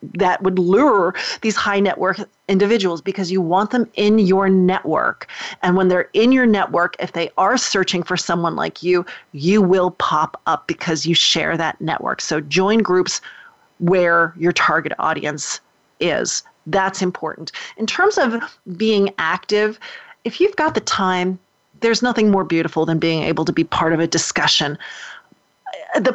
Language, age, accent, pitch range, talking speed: English, 40-59, American, 175-215 Hz, 165 wpm